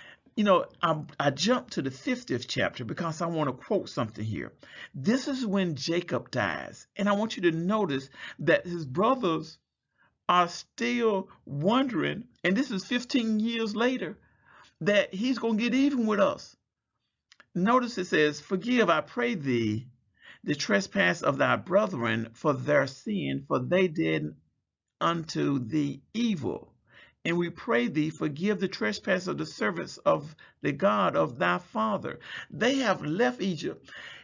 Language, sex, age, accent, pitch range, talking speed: English, male, 50-69, American, 130-210 Hz, 155 wpm